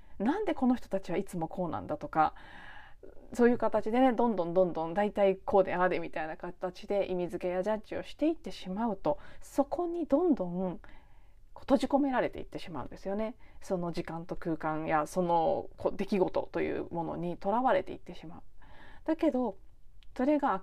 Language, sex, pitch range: Japanese, female, 170-255 Hz